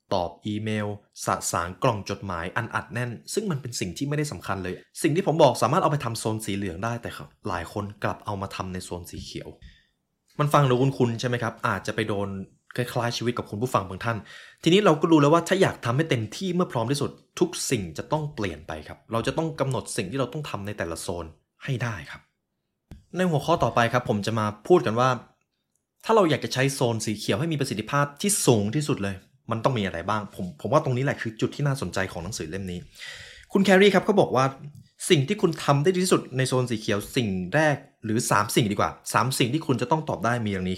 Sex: male